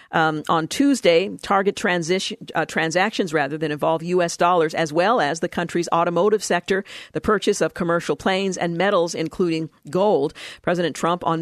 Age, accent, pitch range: 50-69, American, 170-205 Hz